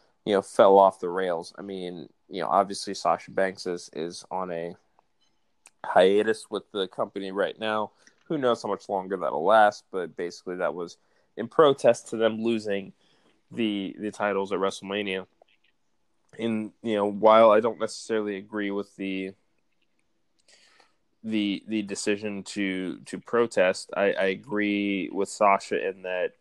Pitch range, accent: 90-105 Hz, American